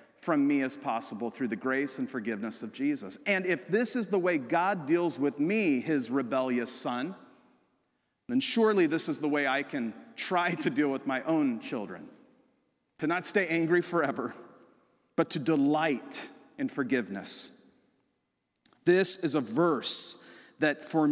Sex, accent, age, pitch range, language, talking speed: male, American, 40-59, 165-240 Hz, English, 155 wpm